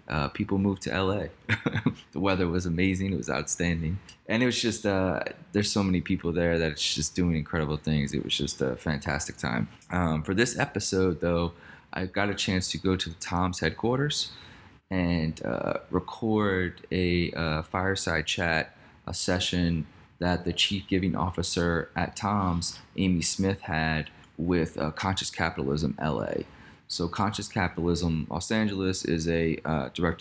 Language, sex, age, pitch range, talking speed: English, male, 20-39, 80-95 Hz, 160 wpm